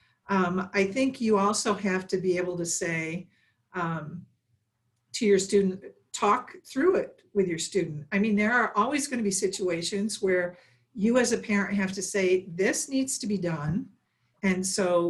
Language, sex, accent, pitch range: English, female, American, 180-225 Hz